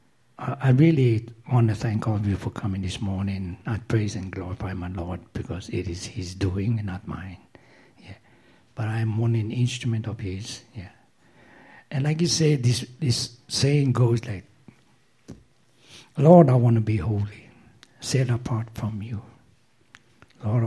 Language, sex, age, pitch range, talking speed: English, male, 60-79, 105-125 Hz, 160 wpm